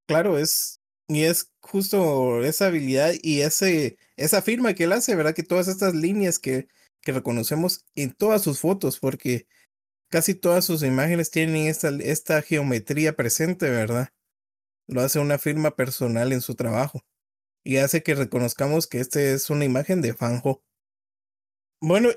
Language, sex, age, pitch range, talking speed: Spanish, male, 30-49, 130-180 Hz, 155 wpm